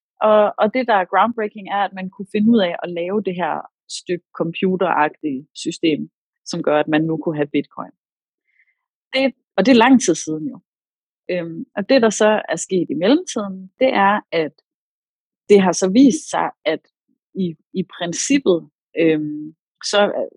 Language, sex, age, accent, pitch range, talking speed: Danish, female, 30-49, native, 165-210 Hz, 170 wpm